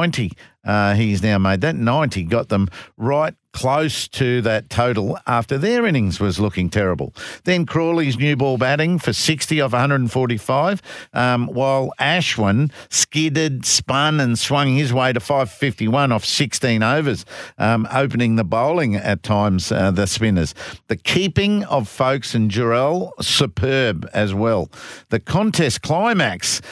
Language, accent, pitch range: English, Australian, 115-155 Hz